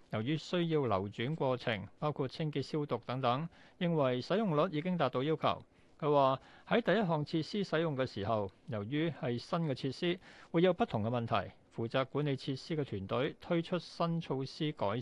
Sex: male